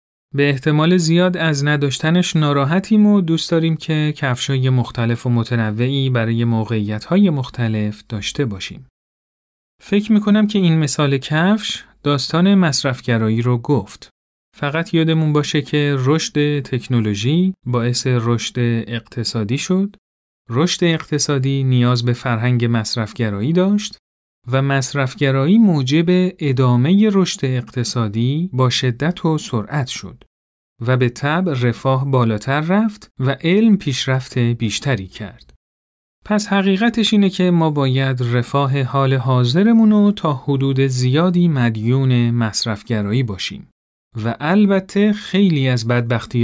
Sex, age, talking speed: male, 40-59, 115 wpm